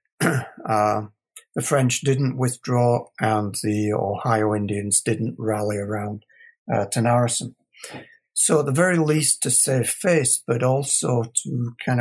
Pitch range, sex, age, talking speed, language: 110-150 Hz, male, 60-79, 125 wpm, English